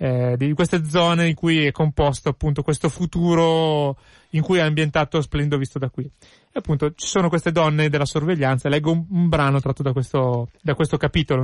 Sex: male